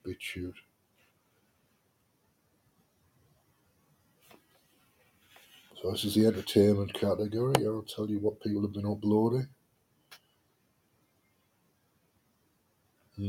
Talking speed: 70 wpm